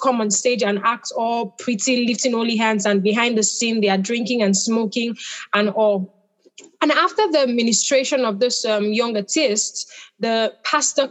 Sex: female